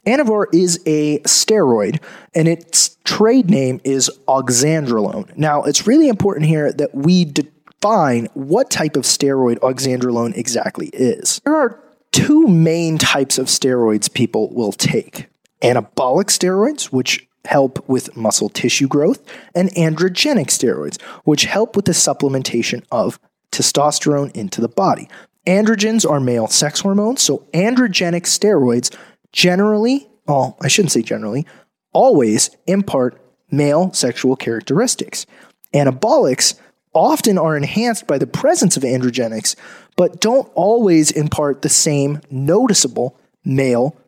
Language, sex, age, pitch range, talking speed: English, male, 30-49, 135-195 Hz, 125 wpm